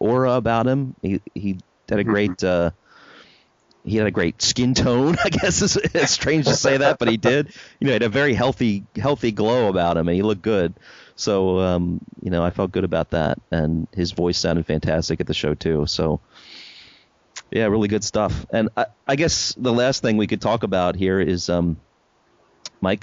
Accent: American